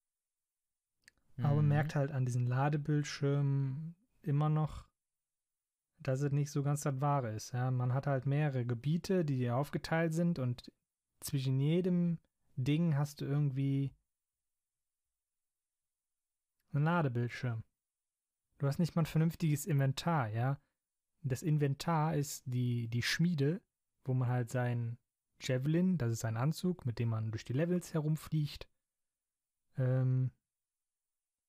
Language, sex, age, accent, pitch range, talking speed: German, male, 30-49, German, 125-145 Hz, 125 wpm